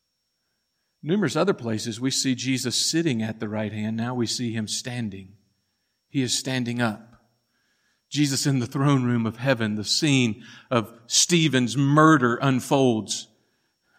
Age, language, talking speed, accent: 50-69, English, 140 wpm, American